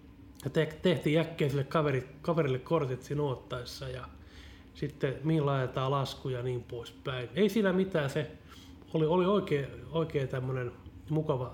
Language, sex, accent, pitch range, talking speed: Finnish, male, native, 95-155 Hz, 135 wpm